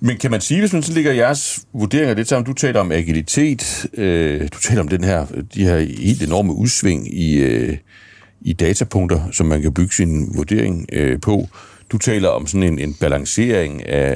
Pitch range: 85-110 Hz